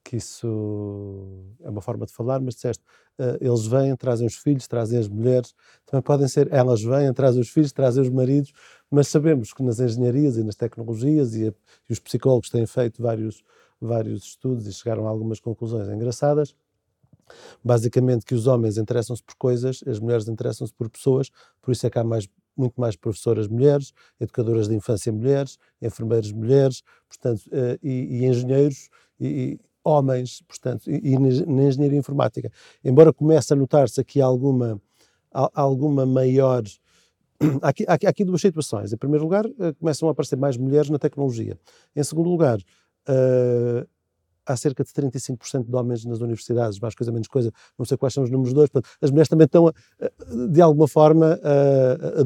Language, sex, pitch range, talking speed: Portuguese, male, 115-140 Hz, 165 wpm